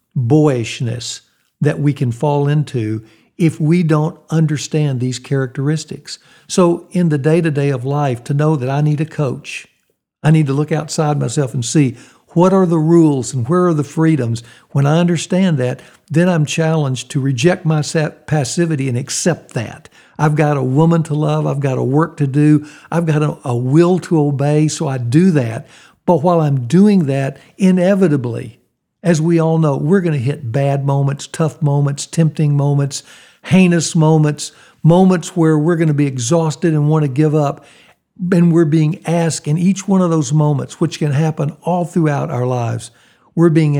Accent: American